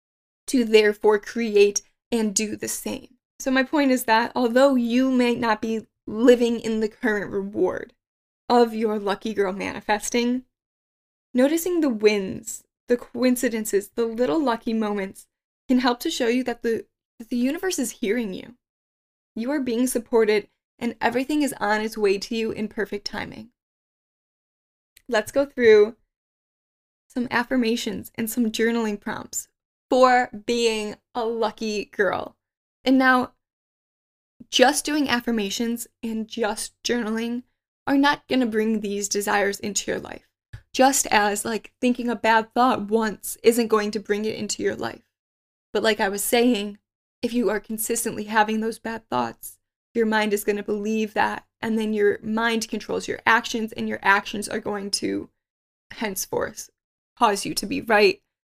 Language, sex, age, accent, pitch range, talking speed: English, female, 10-29, American, 215-245 Hz, 155 wpm